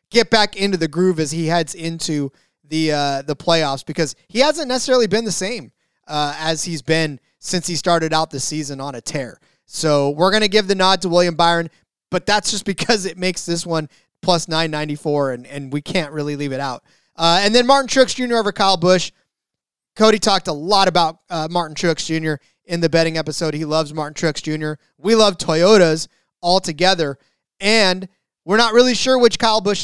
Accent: American